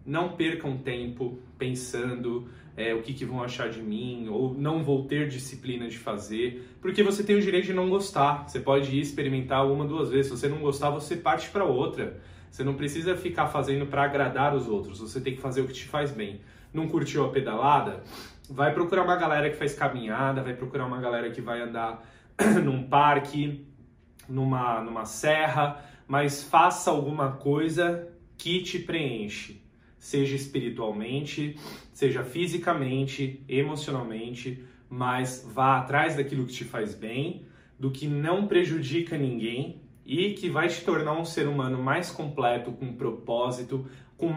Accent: Brazilian